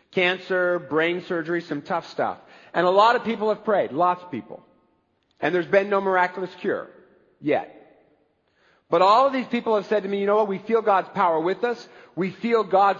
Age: 50-69